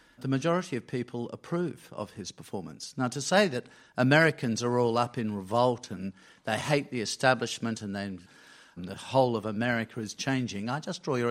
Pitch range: 110-135 Hz